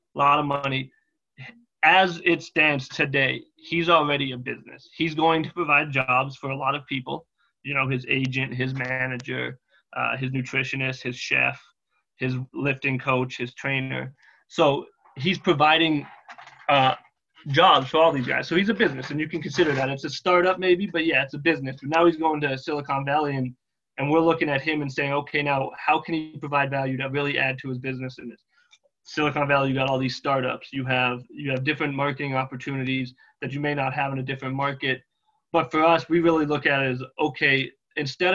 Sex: male